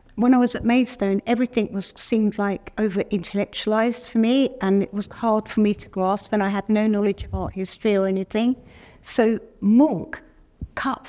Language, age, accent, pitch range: English, 50-69, British, 195-235 Hz